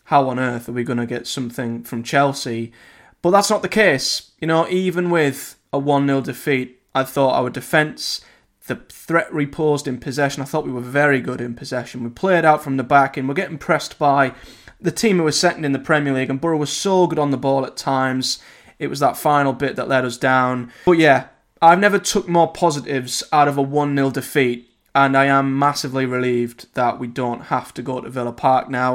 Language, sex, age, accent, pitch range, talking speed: English, male, 20-39, British, 125-150 Hz, 220 wpm